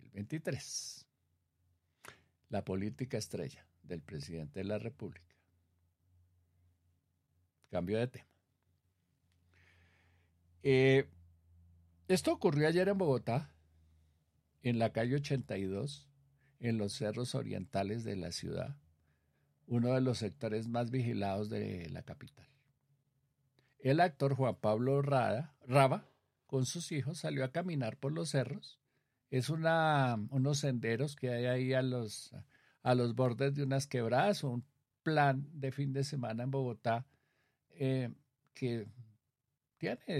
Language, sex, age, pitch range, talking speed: Spanish, male, 50-69, 100-135 Hz, 115 wpm